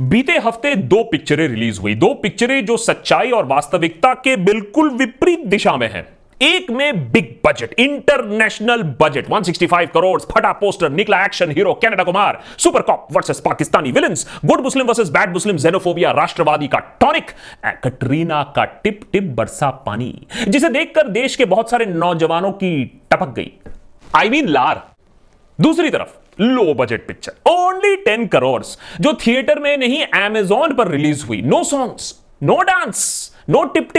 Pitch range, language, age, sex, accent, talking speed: 175-275 Hz, Hindi, 30-49, male, native, 155 wpm